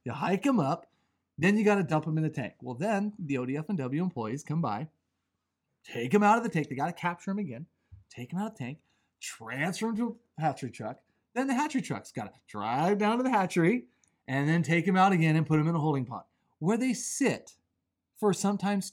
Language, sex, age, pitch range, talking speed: English, male, 30-49, 125-180 Hz, 240 wpm